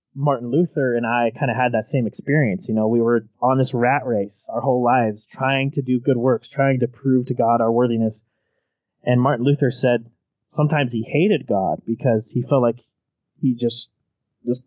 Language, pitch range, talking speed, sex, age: English, 115-135 Hz, 195 wpm, male, 20-39